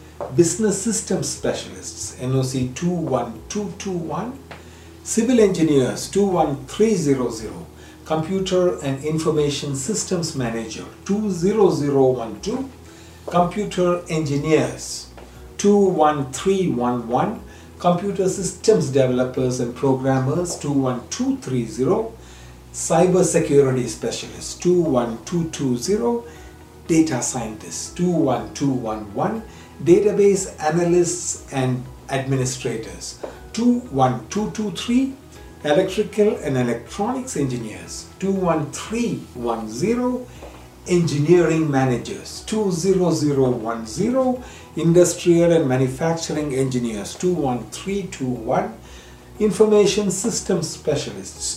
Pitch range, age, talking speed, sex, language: 125-190 Hz, 60-79, 65 wpm, male, English